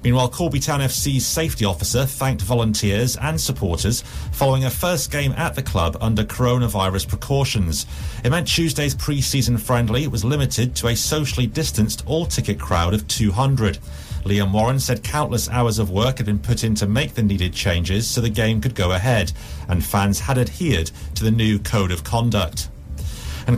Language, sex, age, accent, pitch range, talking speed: English, male, 40-59, British, 105-135 Hz, 175 wpm